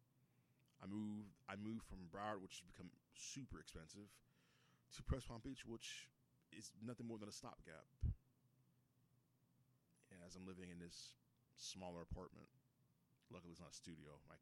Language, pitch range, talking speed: English, 85-125 Hz, 145 wpm